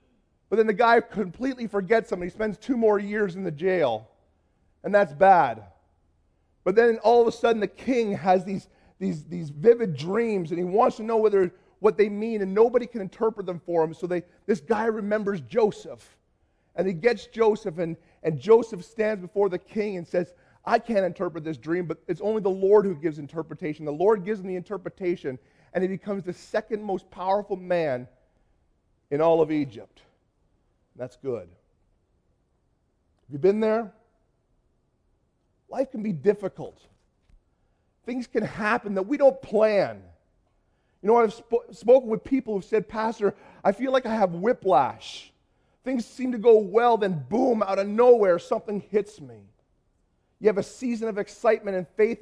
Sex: male